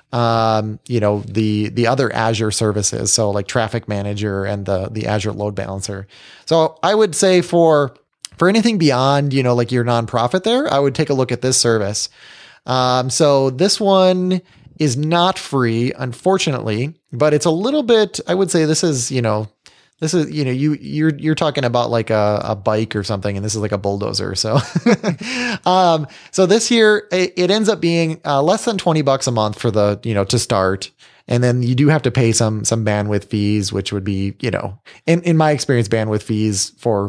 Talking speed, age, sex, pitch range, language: 205 wpm, 20-39, male, 110-155 Hz, English